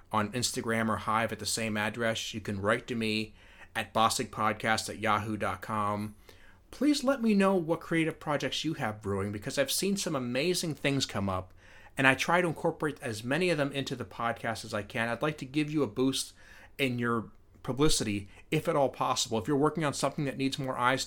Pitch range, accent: 105-135 Hz, American